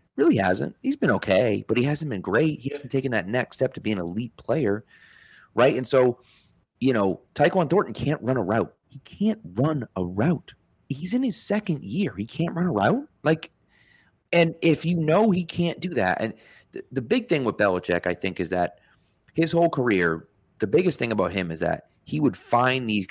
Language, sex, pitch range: English, male, 100-165 Hz